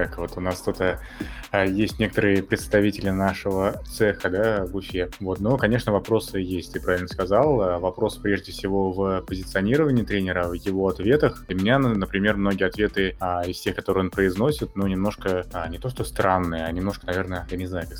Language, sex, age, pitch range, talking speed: Russian, male, 20-39, 95-110 Hz, 180 wpm